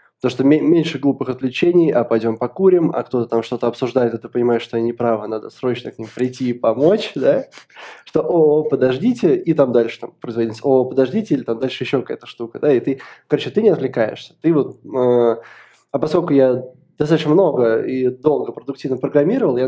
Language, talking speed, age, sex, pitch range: Russian, 190 wpm, 20-39, male, 120-145 Hz